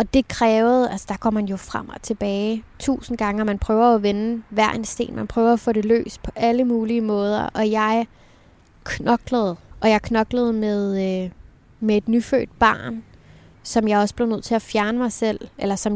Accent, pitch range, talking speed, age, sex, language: native, 205-235 Hz, 205 wpm, 20-39, female, Danish